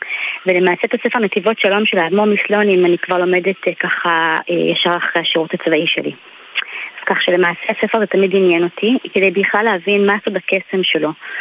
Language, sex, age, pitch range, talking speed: Hebrew, female, 20-39, 180-210 Hz, 170 wpm